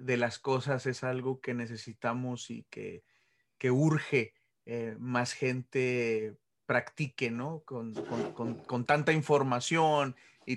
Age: 30-49